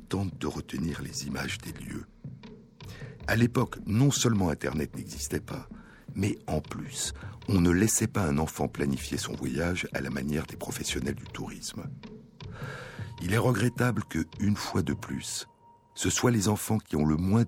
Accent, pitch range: French, 75-105 Hz